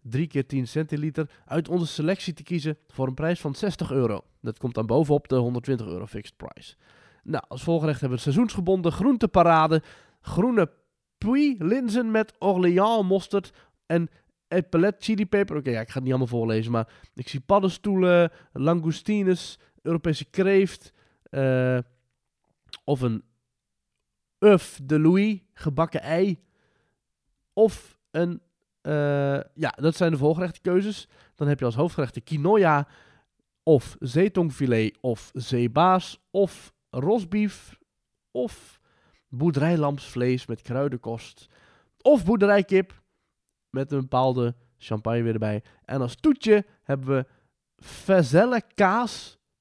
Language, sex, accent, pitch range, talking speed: Dutch, male, Dutch, 130-190 Hz, 120 wpm